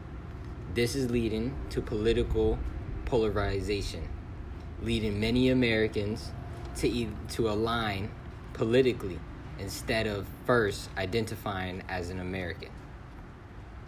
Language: English